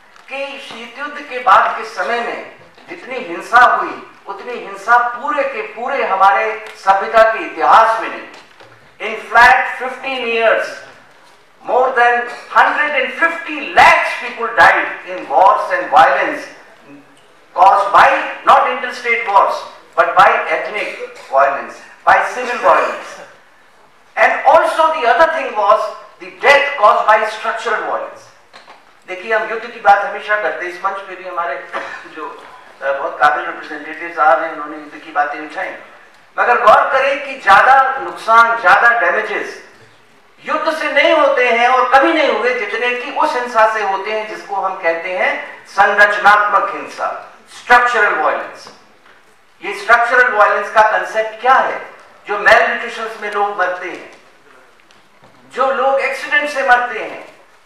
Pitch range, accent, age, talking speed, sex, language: 200-265 Hz, Indian, 50-69, 105 wpm, male, English